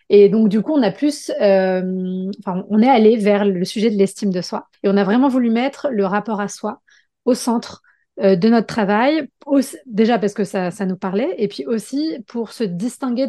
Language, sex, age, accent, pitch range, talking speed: French, female, 30-49, French, 200-250 Hz, 215 wpm